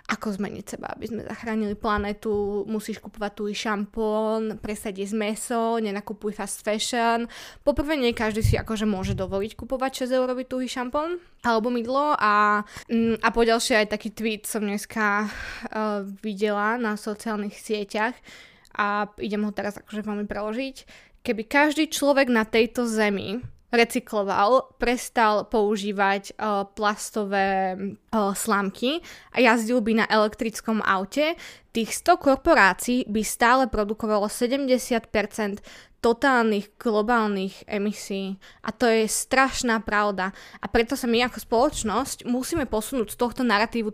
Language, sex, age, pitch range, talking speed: Slovak, female, 20-39, 210-240 Hz, 130 wpm